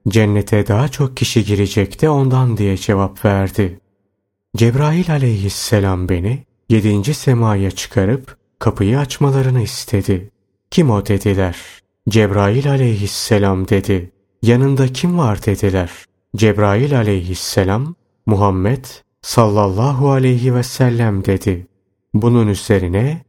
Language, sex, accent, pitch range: Turkish, male, native, 100-130 Hz